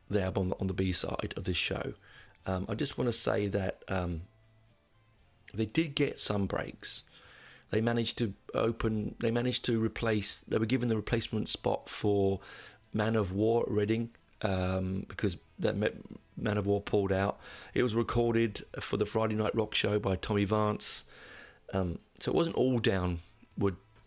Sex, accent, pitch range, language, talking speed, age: male, British, 100-115 Hz, English, 175 wpm, 30-49